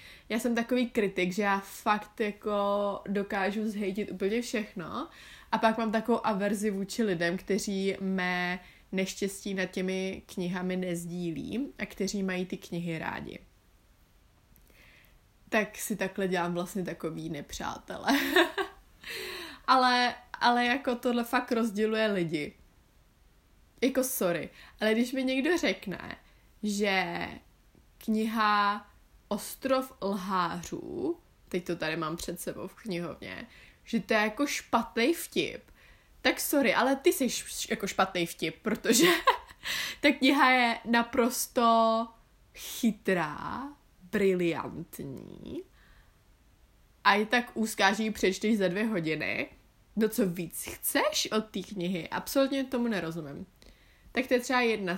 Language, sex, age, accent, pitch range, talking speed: Czech, female, 20-39, native, 185-240 Hz, 120 wpm